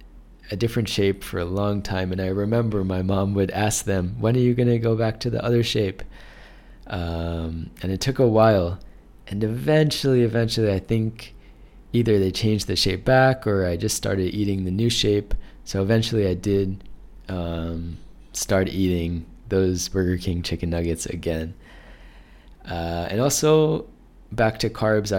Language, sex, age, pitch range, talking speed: English, male, 20-39, 85-110 Hz, 165 wpm